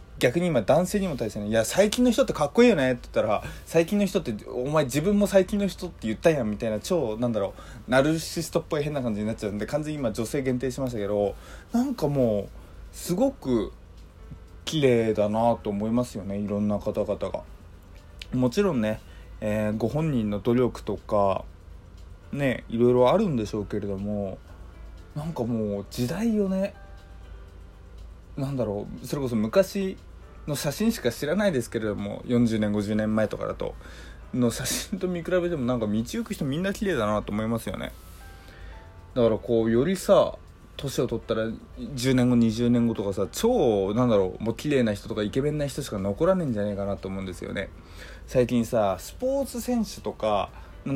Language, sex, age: Japanese, male, 20-39